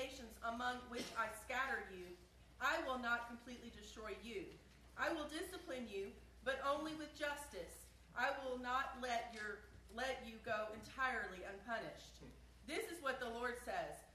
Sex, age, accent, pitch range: female, 40-59, American, 240-295 Hz